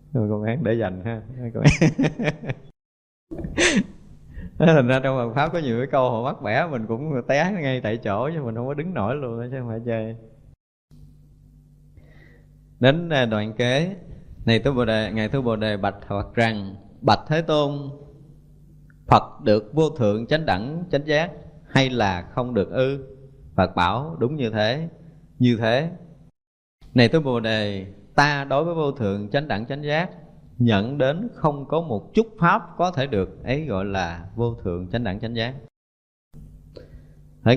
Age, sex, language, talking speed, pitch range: 20-39, male, Vietnamese, 170 wpm, 105-145 Hz